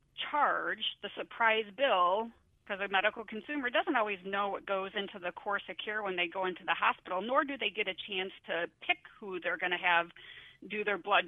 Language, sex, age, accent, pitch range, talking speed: English, female, 40-59, American, 185-220 Hz, 215 wpm